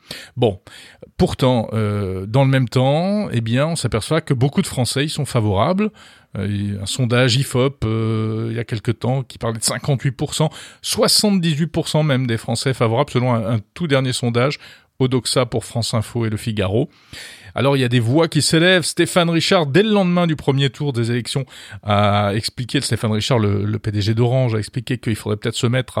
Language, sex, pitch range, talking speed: French, male, 115-155 Hz, 190 wpm